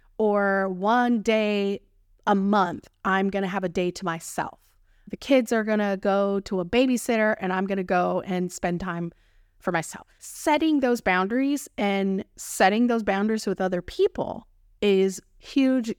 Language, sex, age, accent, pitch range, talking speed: English, female, 20-39, American, 170-225 Hz, 165 wpm